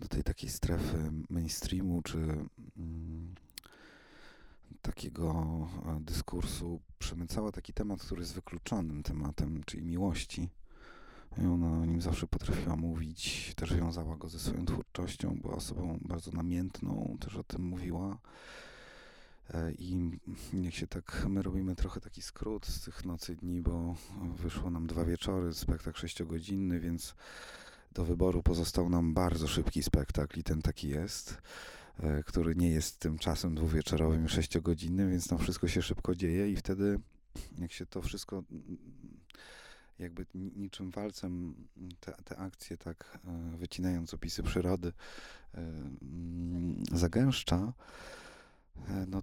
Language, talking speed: Polish, 125 wpm